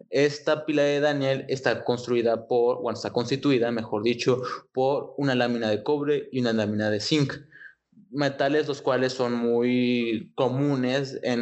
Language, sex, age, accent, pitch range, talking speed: Spanish, male, 20-39, Mexican, 120-140 Hz, 155 wpm